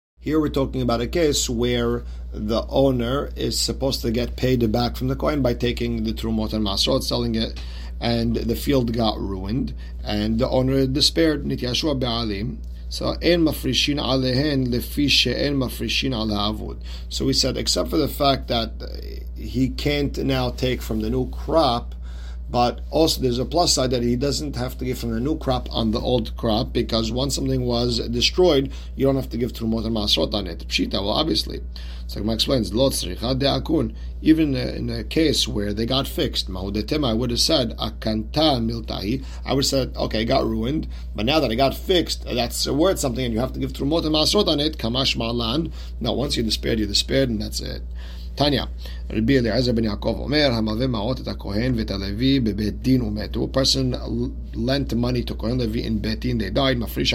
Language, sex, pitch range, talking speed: English, male, 105-130 Hz, 175 wpm